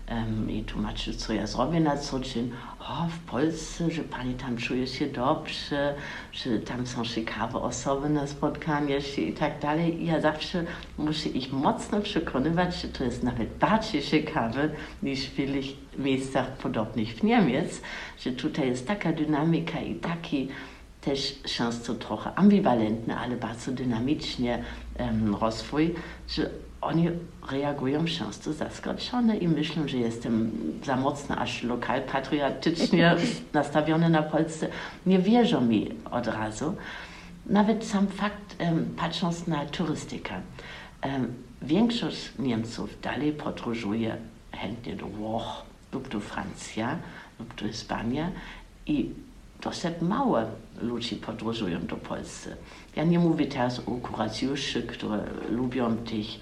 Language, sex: Polish, female